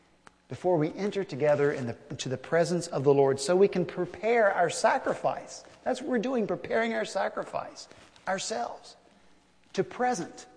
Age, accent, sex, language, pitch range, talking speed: 50-69, American, male, English, 140-180 Hz, 150 wpm